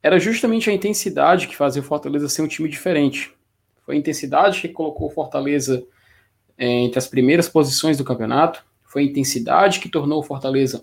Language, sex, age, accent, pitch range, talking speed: Portuguese, male, 20-39, Brazilian, 130-190 Hz, 175 wpm